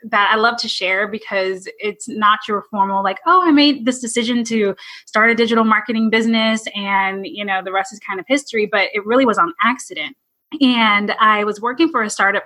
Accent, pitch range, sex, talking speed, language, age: American, 200-255 Hz, female, 210 wpm, English, 20-39